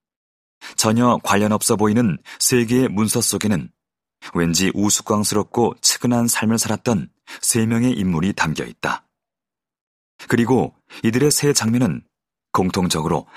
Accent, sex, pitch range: native, male, 95-120 Hz